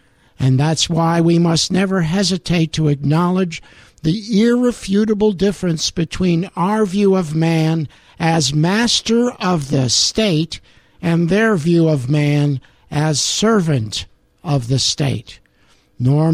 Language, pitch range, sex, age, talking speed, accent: English, 135-180 Hz, male, 60-79, 120 wpm, American